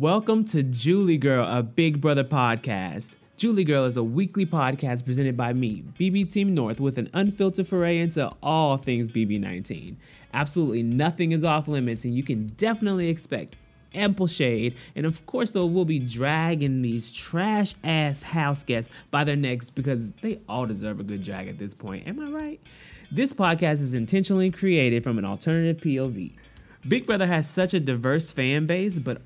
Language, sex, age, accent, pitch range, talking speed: English, male, 30-49, American, 125-175 Hz, 175 wpm